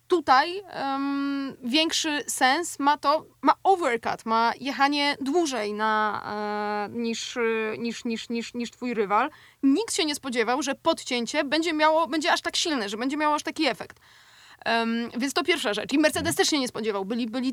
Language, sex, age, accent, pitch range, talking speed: Polish, female, 20-39, native, 235-290 Hz, 175 wpm